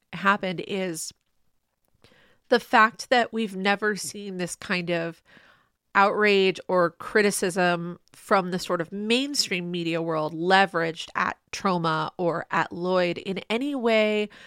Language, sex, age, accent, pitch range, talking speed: English, female, 30-49, American, 180-245 Hz, 125 wpm